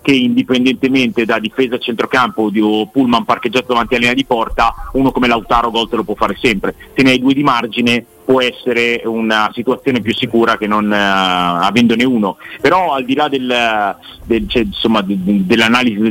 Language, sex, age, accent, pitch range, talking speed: Italian, male, 30-49, native, 110-130 Hz, 185 wpm